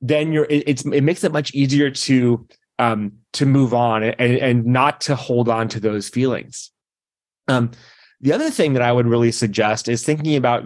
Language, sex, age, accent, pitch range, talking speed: English, male, 30-49, American, 120-145 Hz, 190 wpm